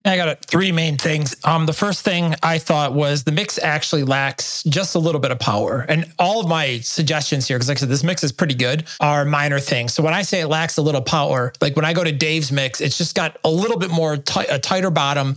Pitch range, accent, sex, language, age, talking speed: 135-165 Hz, American, male, English, 30-49, 260 wpm